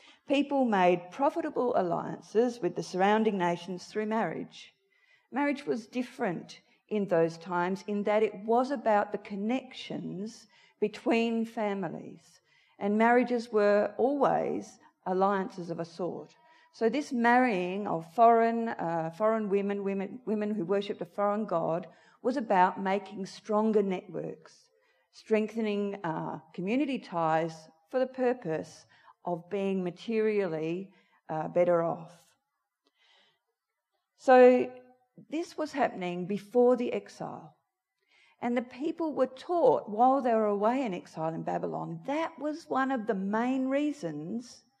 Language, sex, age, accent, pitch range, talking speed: English, female, 50-69, Australian, 195-260 Hz, 125 wpm